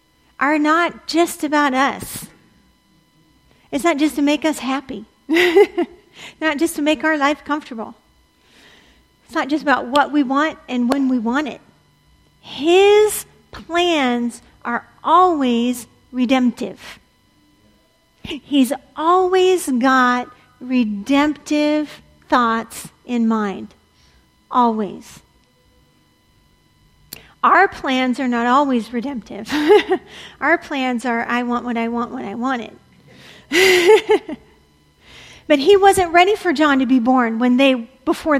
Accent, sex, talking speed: American, female, 115 wpm